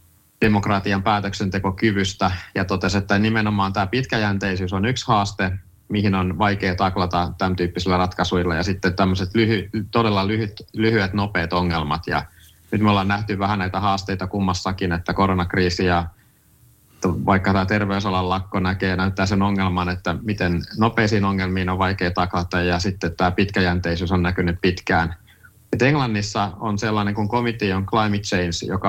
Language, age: Finnish, 30-49